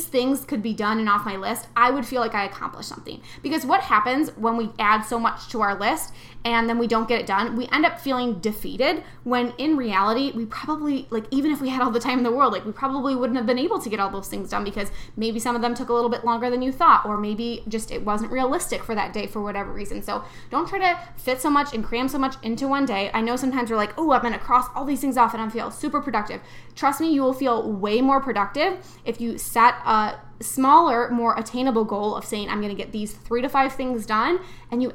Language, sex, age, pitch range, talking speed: English, female, 10-29, 220-265 Hz, 265 wpm